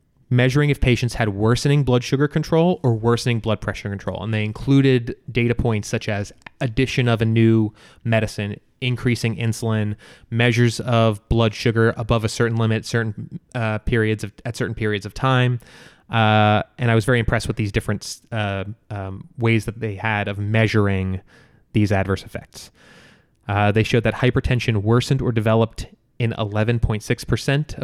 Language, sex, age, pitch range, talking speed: English, male, 20-39, 105-125 Hz, 160 wpm